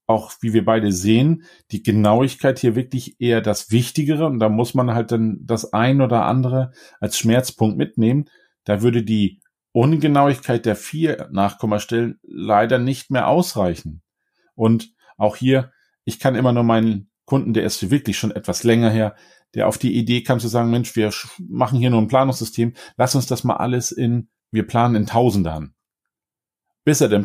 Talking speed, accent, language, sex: 175 wpm, German, German, male